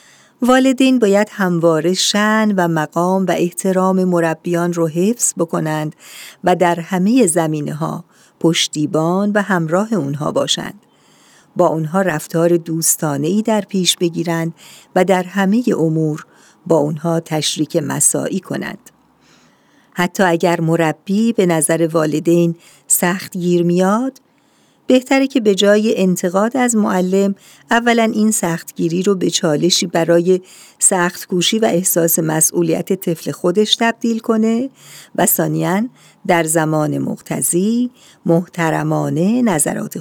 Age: 50-69